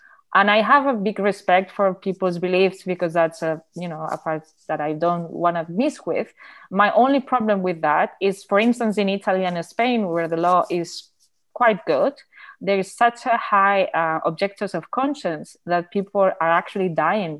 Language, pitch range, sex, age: English, 175-215 Hz, female, 20-39